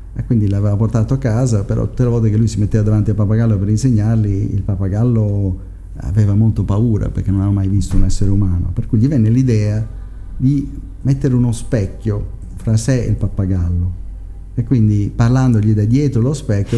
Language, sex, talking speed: English, male, 190 wpm